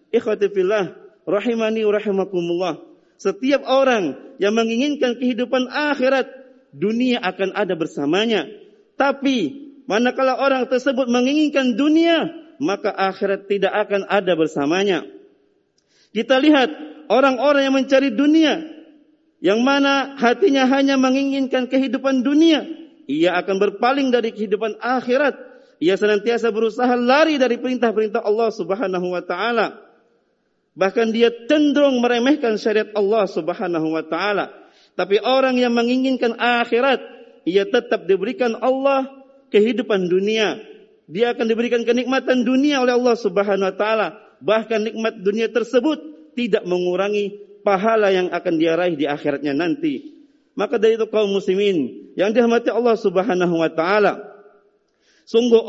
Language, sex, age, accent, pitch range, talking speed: Indonesian, male, 40-59, native, 205-270 Hz, 115 wpm